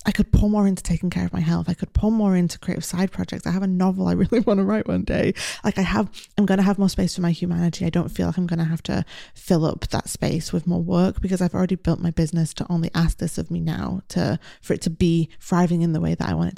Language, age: English, 20-39